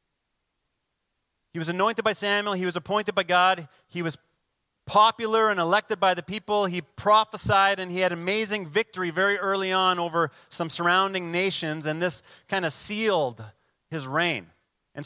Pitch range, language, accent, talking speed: 165-195 Hz, English, American, 160 wpm